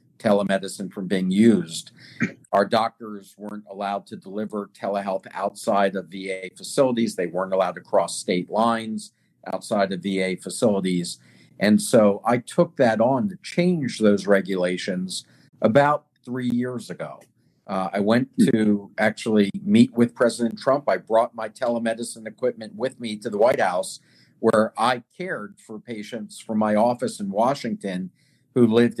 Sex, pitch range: male, 100-125 Hz